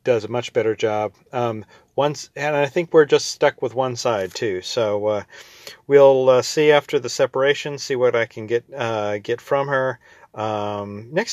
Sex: male